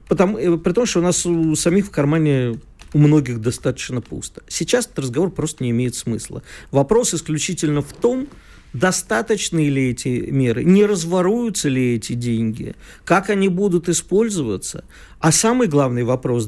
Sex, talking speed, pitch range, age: male, 155 wpm, 120-175 Hz, 50-69